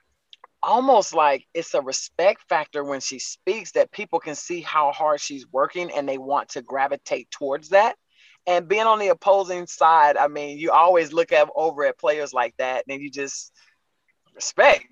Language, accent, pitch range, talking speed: English, American, 140-175 Hz, 180 wpm